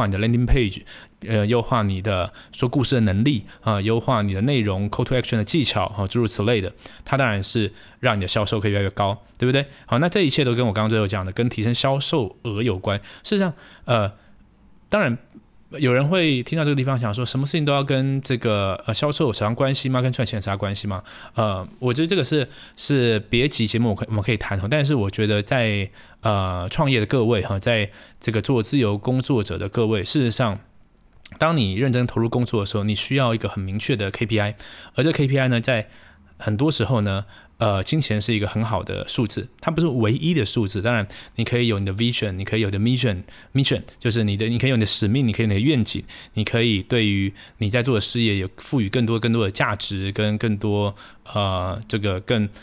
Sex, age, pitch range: male, 20-39, 105-125 Hz